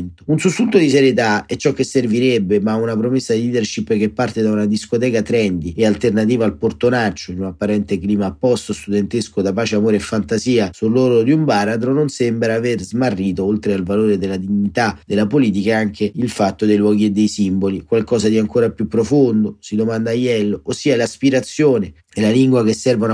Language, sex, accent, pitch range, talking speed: Italian, male, native, 105-130 Hz, 185 wpm